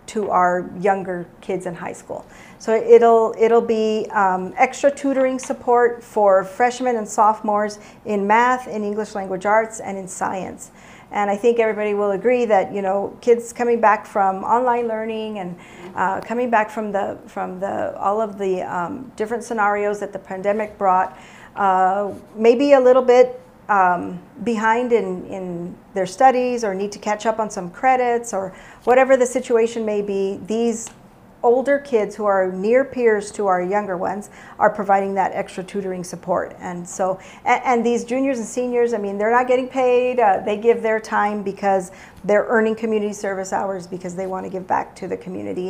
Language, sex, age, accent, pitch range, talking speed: English, female, 40-59, American, 195-235 Hz, 180 wpm